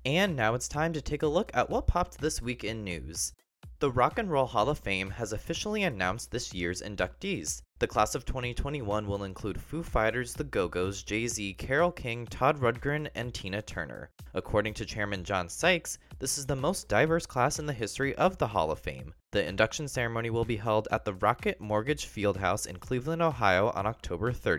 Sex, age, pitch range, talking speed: male, 20-39, 105-140 Hz, 200 wpm